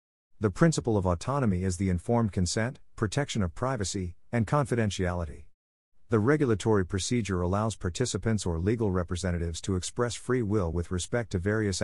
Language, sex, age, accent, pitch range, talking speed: English, male, 50-69, American, 90-115 Hz, 145 wpm